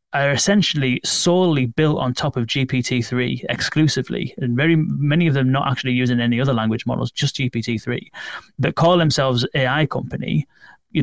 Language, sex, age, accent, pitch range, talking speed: English, male, 30-49, British, 120-150 Hz, 160 wpm